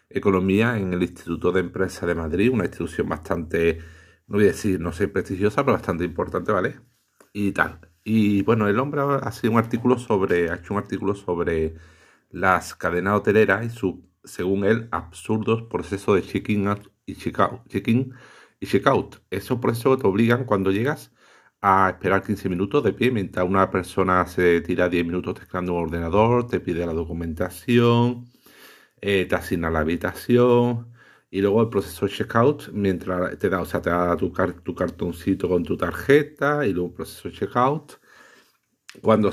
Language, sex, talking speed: Spanish, male, 170 wpm